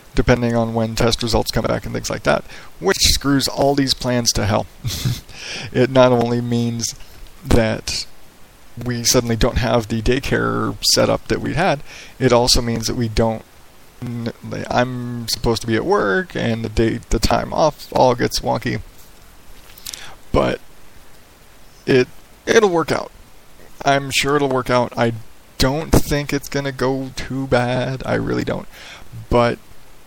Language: English